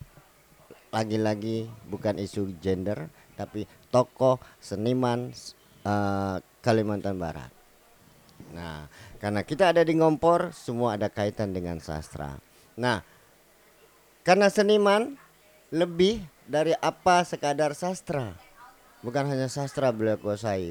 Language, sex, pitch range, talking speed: Indonesian, male, 100-125 Hz, 100 wpm